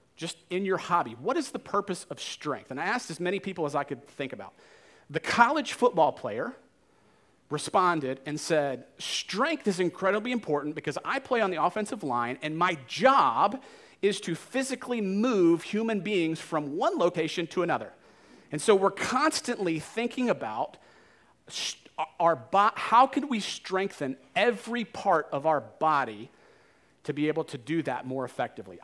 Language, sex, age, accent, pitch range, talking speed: English, male, 40-59, American, 150-215 Hz, 165 wpm